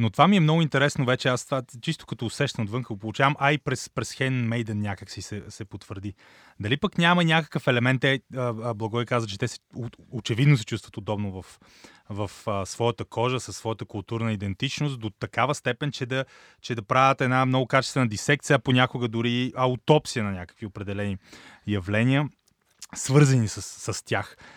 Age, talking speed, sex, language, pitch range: 30-49, 170 wpm, male, Bulgarian, 110-145 Hz